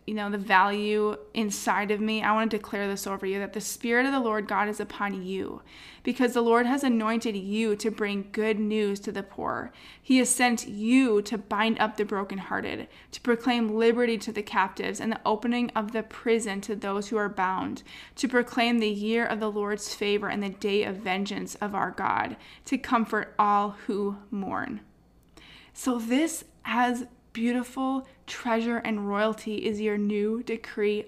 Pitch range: 205-245 Hz